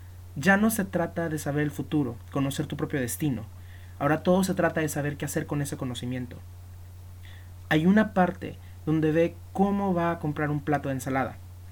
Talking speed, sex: 185 wpm, male